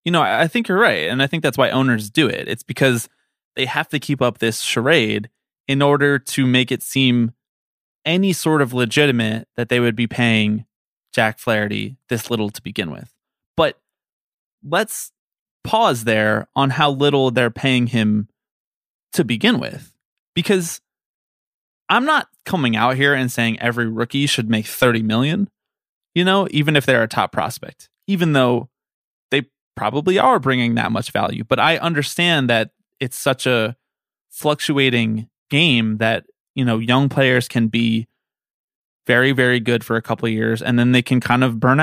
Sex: male